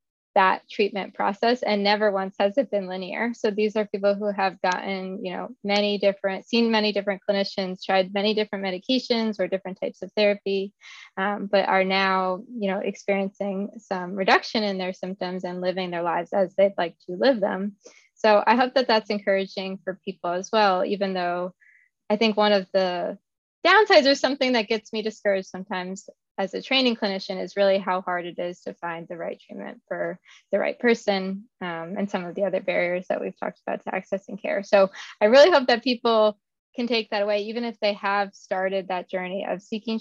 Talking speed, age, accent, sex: 200 wpm, 20-39, American, female